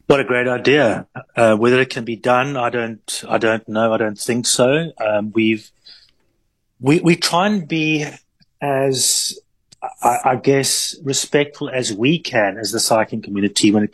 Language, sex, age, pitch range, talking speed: English, male, 30-49, 110-145 Hz, 170 wpm